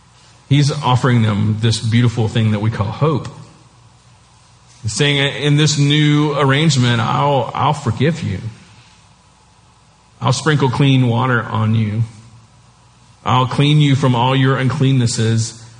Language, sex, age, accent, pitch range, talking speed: English, male, 40-59, American, 115-140 Hz, 125 wpm